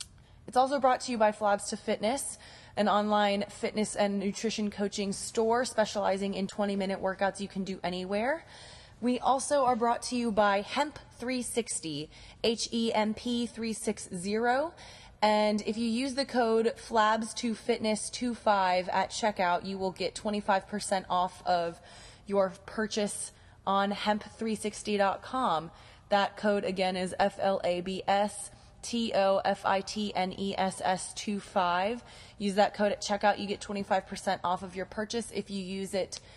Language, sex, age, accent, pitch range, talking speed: English, female, 20-39, American, 185-220 Hz, 145 wpm